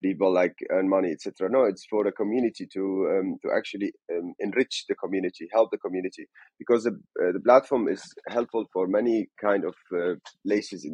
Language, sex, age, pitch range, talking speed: English, male, 30-49, 95-120 Hz, 190 wpm